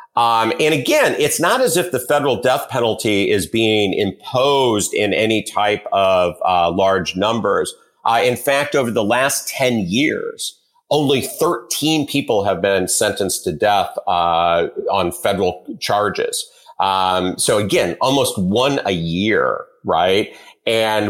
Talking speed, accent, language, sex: 140 wpm, American, English, male